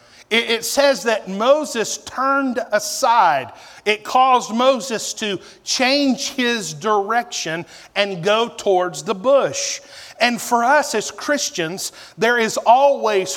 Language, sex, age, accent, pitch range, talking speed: English, male, 40-59, American, 180-235 Hz, 115 wpm